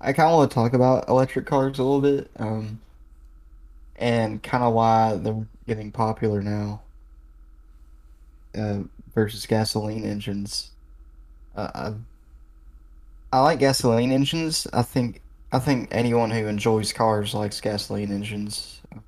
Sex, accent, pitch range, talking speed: male, American, 100-115 Hz, 130 wpm